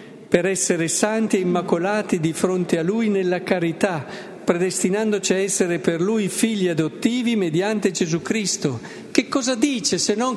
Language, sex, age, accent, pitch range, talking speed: Italian, male, 50-69, native, 160-210 Hz, 150 wpm